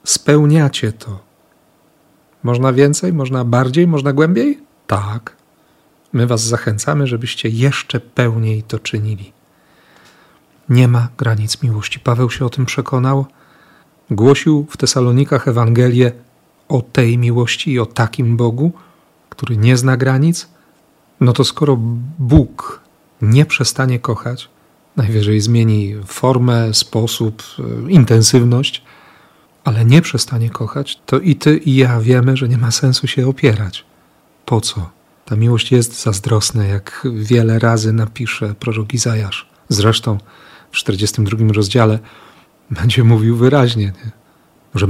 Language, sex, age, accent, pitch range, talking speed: Polish, male, 40-59, native, 115-140 Hz, 120 wpm